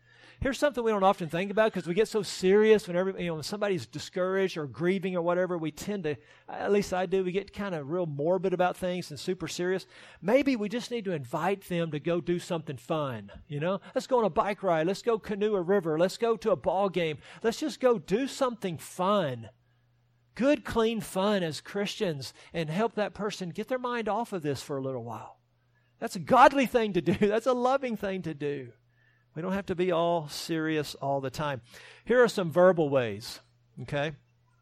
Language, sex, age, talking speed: English, male, 50-69, 215 wpm